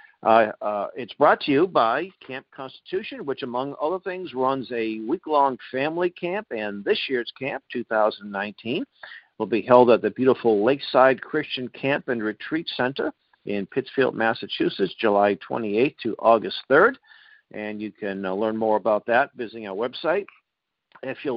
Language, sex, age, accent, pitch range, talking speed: English, male, 50-69, American, 110-150 Hz, 155 wpm